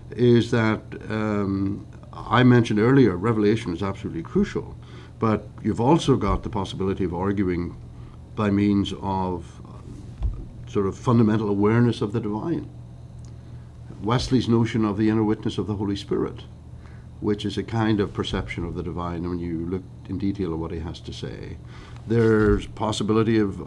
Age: 60-79